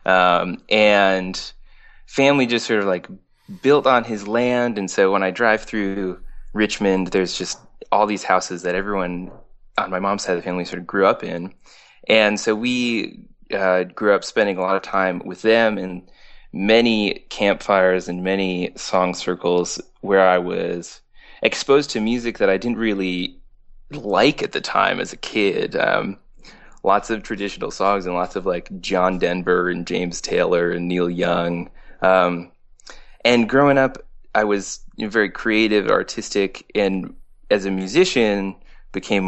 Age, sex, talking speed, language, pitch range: 20-39, male, 160 wpm, English, 90-110 Hz